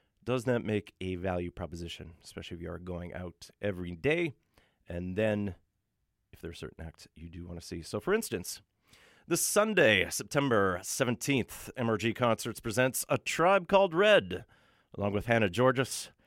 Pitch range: 95-130 Hz